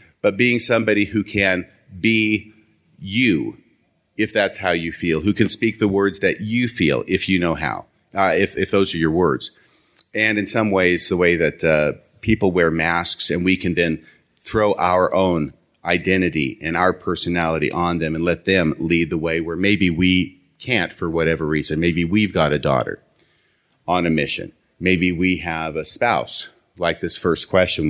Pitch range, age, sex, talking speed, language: 80-100 Hz, 40-59, male, 185 wpm, English